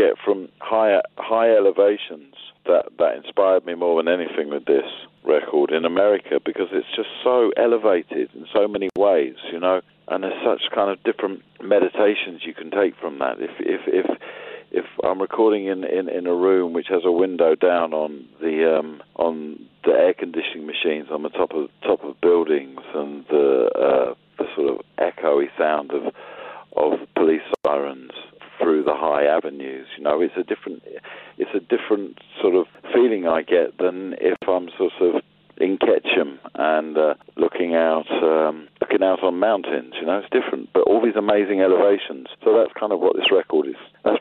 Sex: male